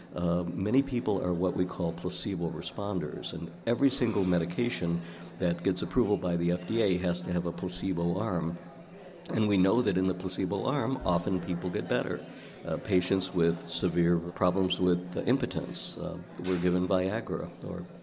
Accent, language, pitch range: American, English, 85-95 Hz